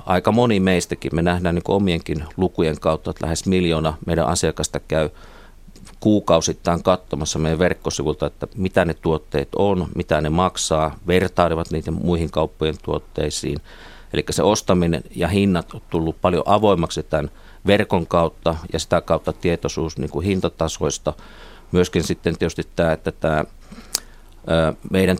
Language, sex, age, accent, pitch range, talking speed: Finnish, male, 50-69, native, 80-95 Hz, 130 wpm